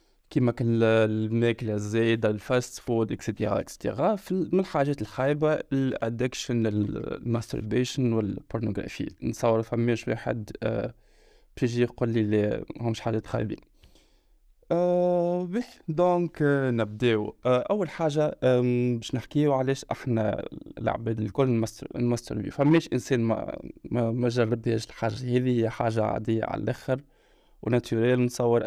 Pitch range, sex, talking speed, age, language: 110-130 Hz, male, 105 wpm, 20-39, Arabic